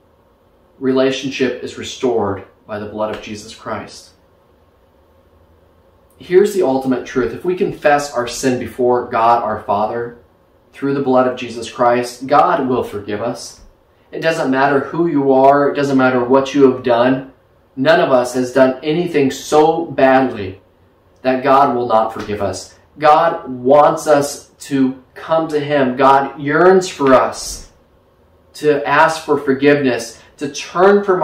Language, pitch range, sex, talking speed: English, 125-150 Hz, male, 150 wpm